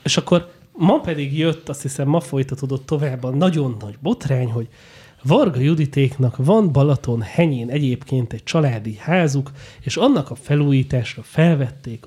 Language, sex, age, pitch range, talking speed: Hungarian, male, 30-49, 125-150 Hz, 140 wpm